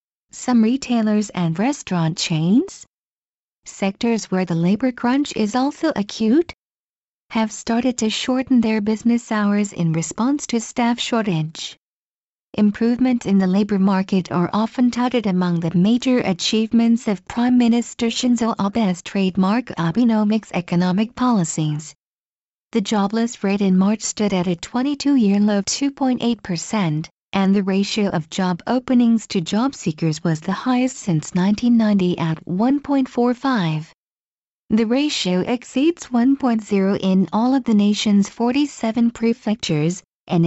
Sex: female